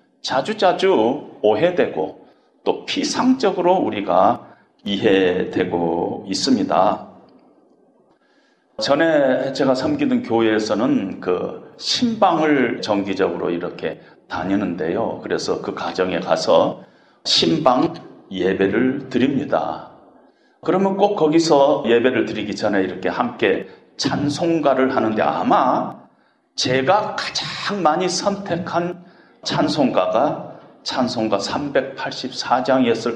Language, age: Korean, 40-59